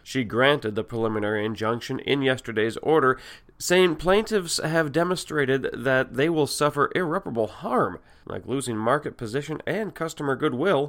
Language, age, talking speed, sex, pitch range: English, 30-49, 140 wpm, male, 120-155 Hz